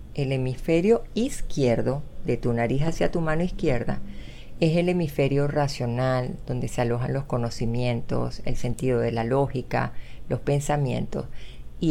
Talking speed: 135 wpm